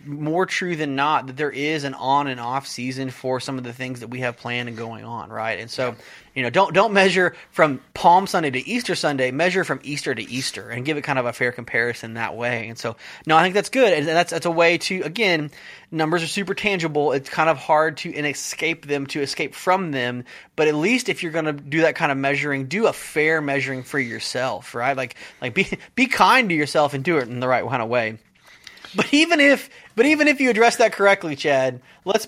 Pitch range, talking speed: 135-195 Hz, 240 wpm